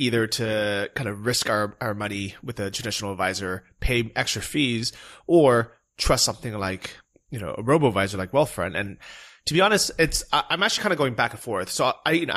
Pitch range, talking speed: 105-135 Hz, 210 wpm